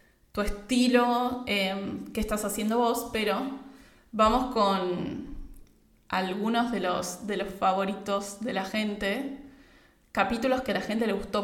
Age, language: 70-89, Spanish